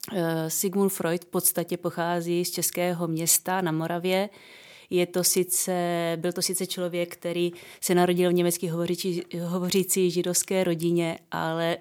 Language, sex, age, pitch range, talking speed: Czech, female, 20-39, 170-185 Hz, 115 wpm